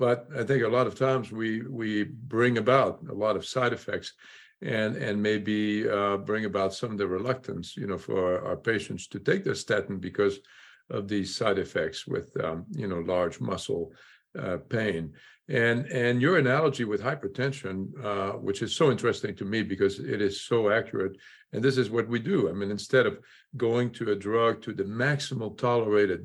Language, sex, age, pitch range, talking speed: English, male, 50-69, 100-125 Hz, 195 wpm